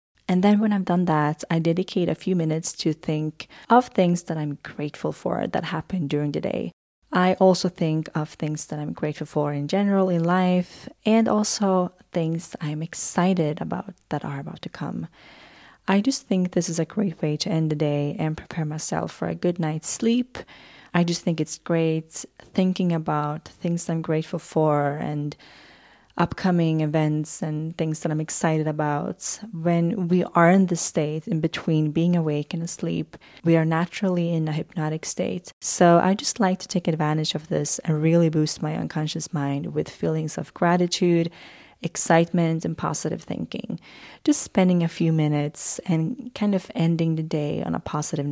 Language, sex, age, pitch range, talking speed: English, female, 30-49, 155-180 Hz, 180 wpm